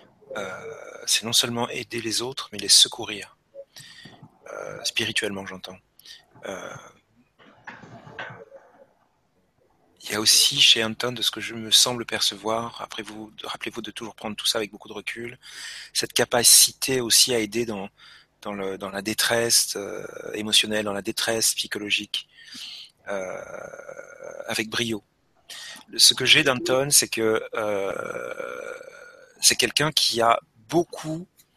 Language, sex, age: French, male, 30-49